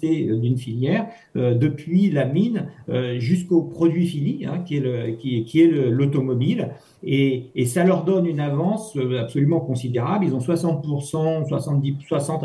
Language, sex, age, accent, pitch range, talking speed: French, male, 50-69, French, 125-165 Hz, 165 wpm